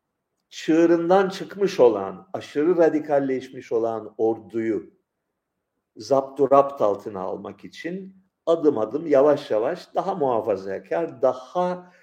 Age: 50-69